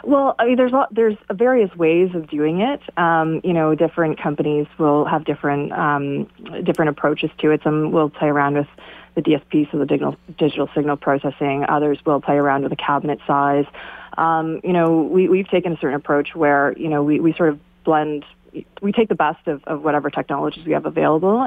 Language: English